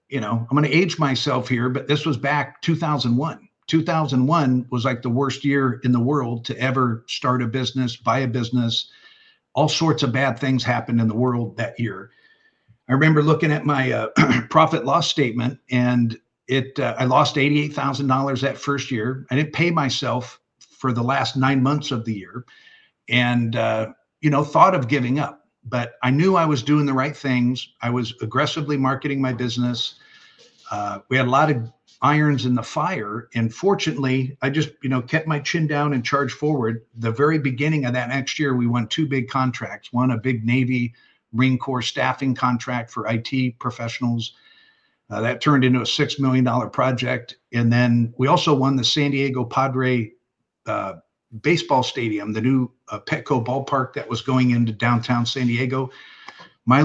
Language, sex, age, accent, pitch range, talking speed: English, male, 50-69, American, 120-145 Hz, 185 wpm